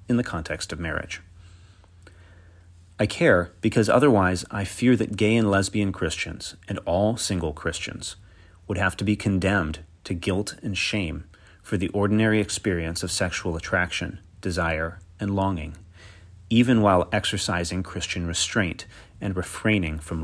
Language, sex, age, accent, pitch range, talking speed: English, male, 30-49, American, 85-105 Hz, 140 wpm